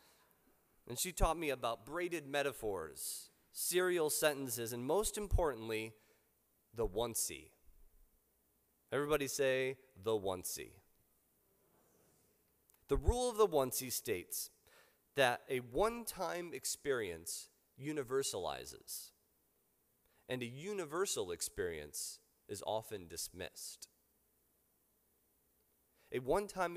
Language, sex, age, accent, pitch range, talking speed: English, male, 30-49, American, 105-170 Hz, 85 wpm